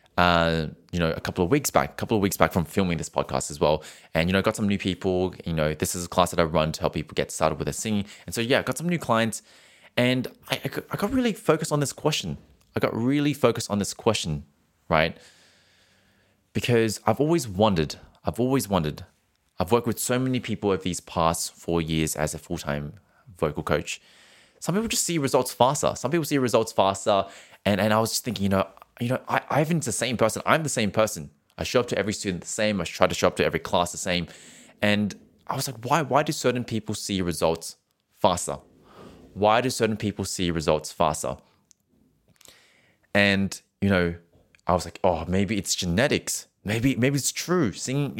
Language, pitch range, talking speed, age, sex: English, 85-125 Hz, 215 wpm, 20-39, male